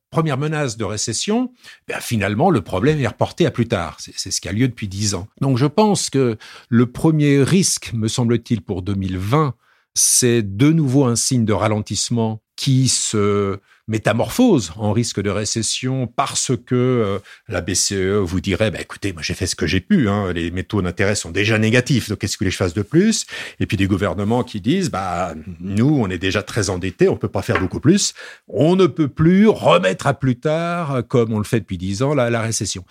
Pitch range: 105-155 Hz